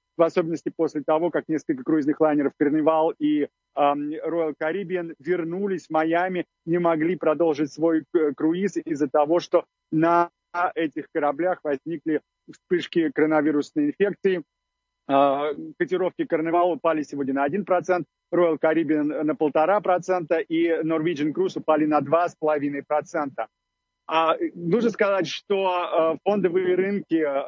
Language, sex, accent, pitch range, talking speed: Russian, male, native, 155-180 Hz, 115 wpm